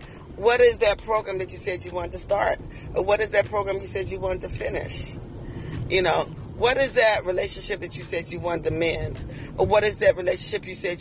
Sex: female